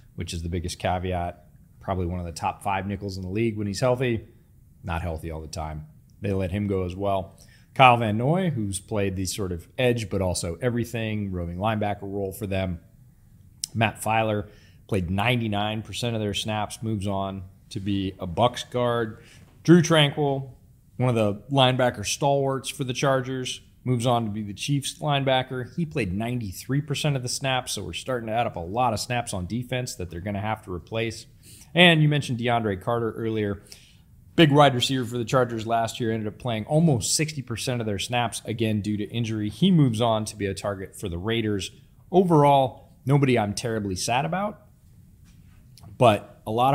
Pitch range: 100-125 Hz